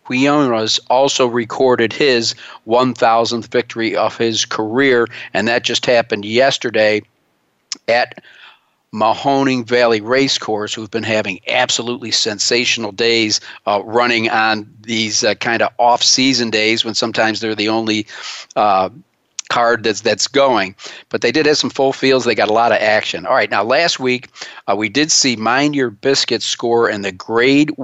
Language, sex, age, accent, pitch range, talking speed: English, male, 50-69, American, 110-135 Hz, 150 wpm